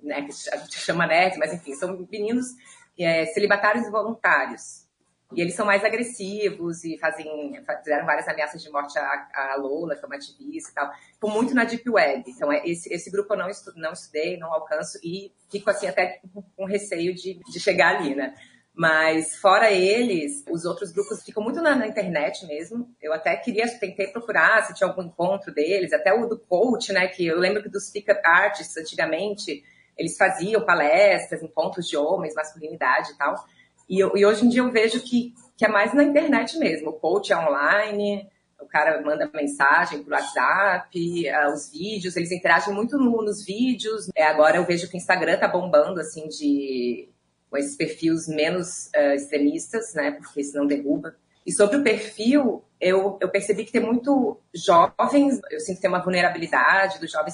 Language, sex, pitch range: Portuguese, female, 155-210 Hz